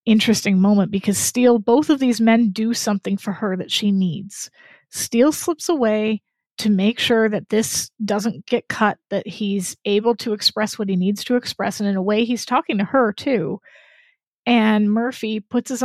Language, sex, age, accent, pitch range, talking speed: English, female, 30-49, American, 215-255 Hz, 185 wpm